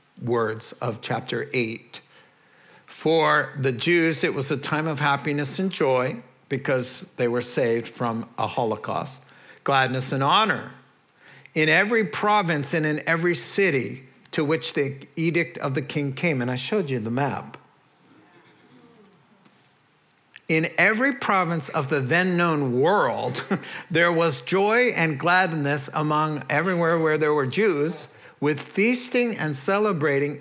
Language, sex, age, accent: English, male, 60-79, American